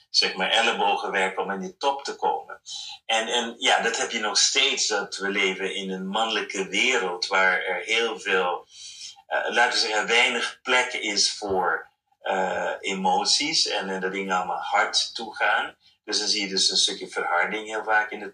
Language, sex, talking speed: Dutch, male, 190 wpm